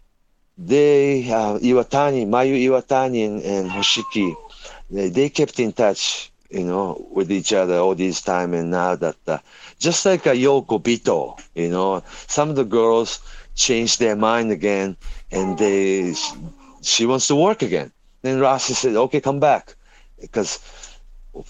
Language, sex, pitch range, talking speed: English, male, 95-130 Hz, 150 wpm